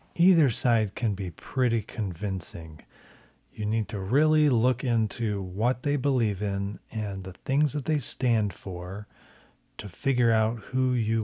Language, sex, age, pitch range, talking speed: English, male, 40-59, 105-125 Hz, 150 wpm